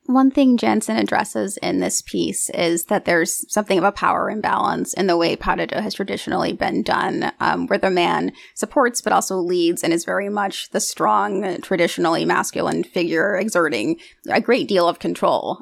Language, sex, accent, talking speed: English, female, American, 180 wpm